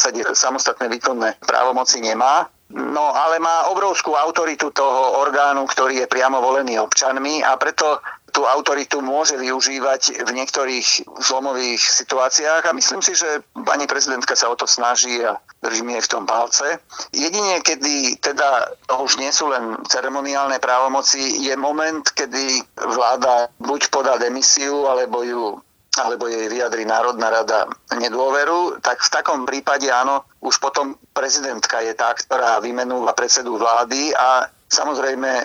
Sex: male